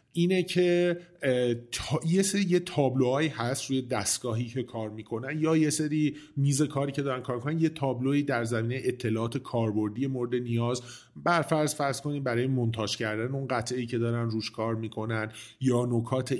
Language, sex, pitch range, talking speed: Persian, male, 110-145 Hz, 165 wpm